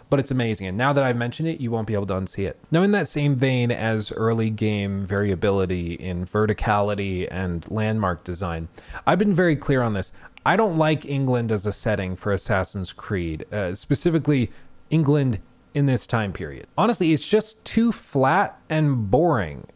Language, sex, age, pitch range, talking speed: English, male, 30-49, 105-155 Hz, 180 wpm